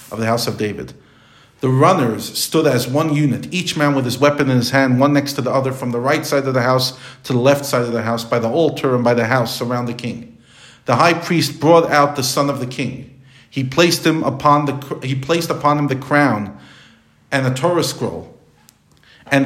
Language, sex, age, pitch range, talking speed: English, male, 50-69, 130-165 Hz, 230 wpm